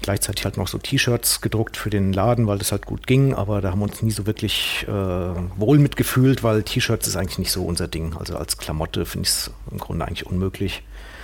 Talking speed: 230 wpm